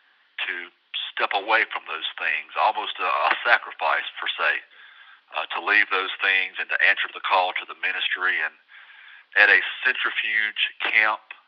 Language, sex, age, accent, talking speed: English, male, 40-59, American, 155 wpm